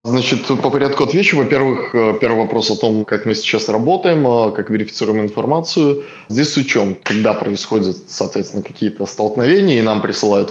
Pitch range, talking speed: 105-120 Hz, 155 wpm